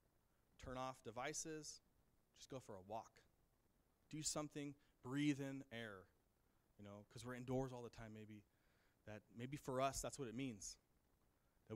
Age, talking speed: 30-49, 160 wpm